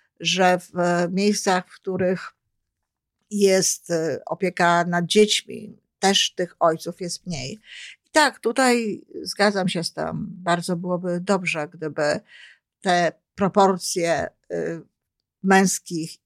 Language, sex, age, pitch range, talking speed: Polish, female, 50-69, 170-200 Hz, 105 wpm